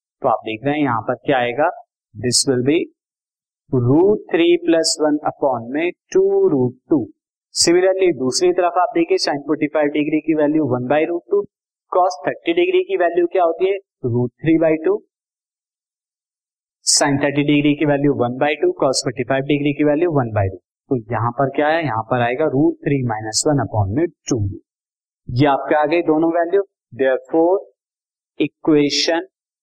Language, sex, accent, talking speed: Hindi, male, native, 180 wpm